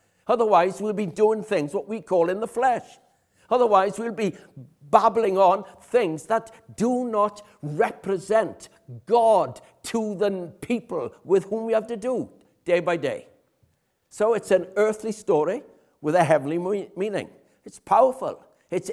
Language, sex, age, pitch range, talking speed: English, male, 60-79, 165-225 Hz, 150 wpm